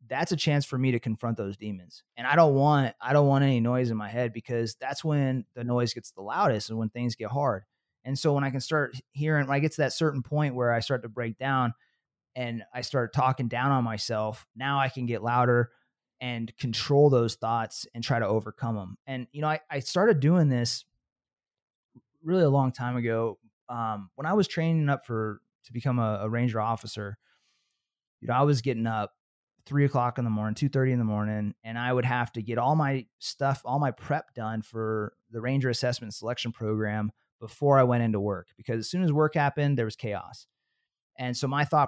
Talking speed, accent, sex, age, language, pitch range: 220 wpm, American, male, 20-39, English, 115-140 Hz